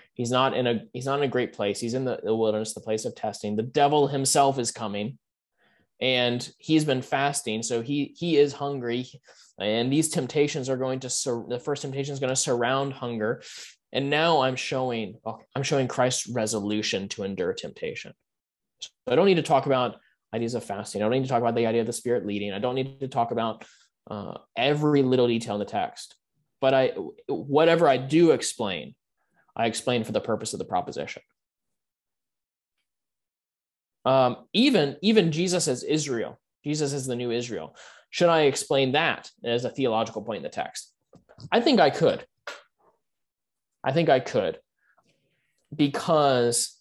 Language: English